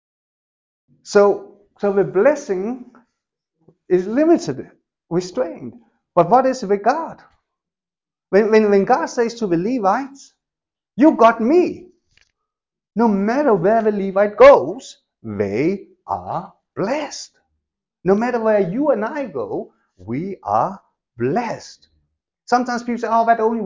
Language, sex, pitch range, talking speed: English, male, 160-235 Hz, 120 wpm